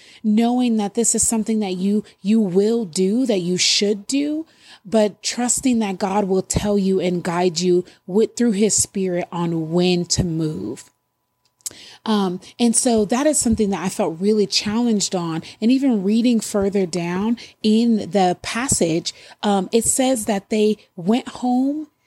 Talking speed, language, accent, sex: 160 wpm, English, American, female